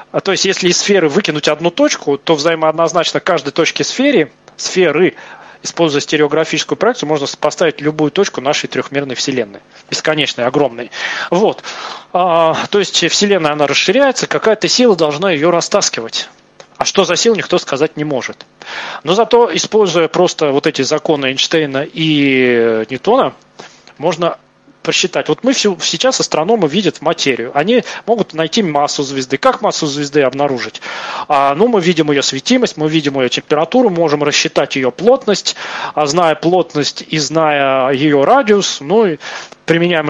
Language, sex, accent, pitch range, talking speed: Russian, male, native, 145-195 Hz, 145 wpm